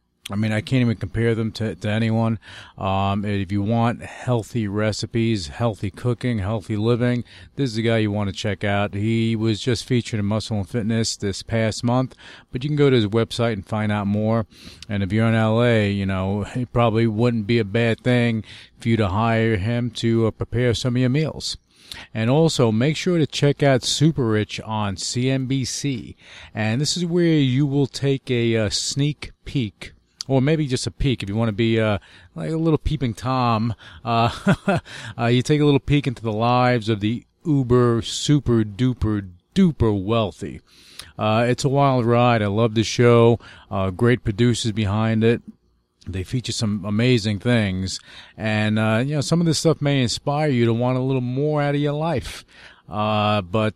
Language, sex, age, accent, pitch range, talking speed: English, male, 40-59, American, 105-125 Hz, 190 wpm